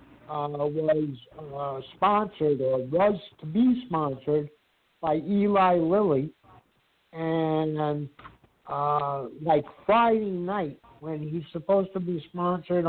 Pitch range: 150-180 Hz